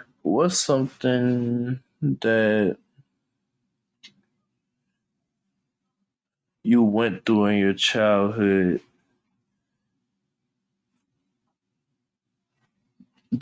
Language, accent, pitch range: English, American, 95-130 Hz